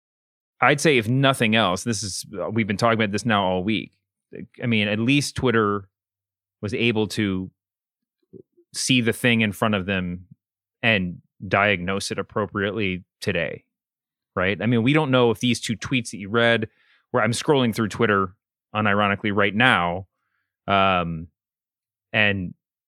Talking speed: 150 wpm